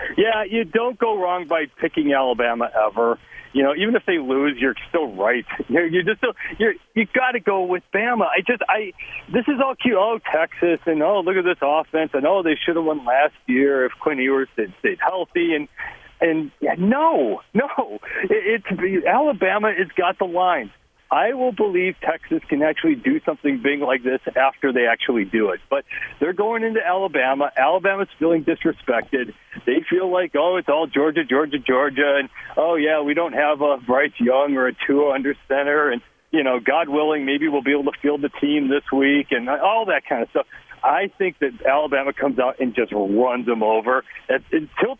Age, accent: 40-59, American